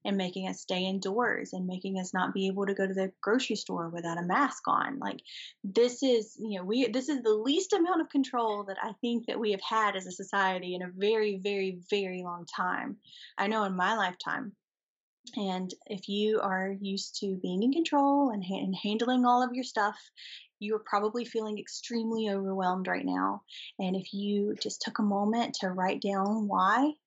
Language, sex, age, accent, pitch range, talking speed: English, female, 20-39, American, 190-220 Hz, 200 wpm